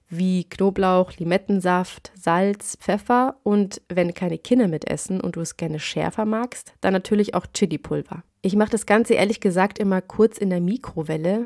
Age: 30-49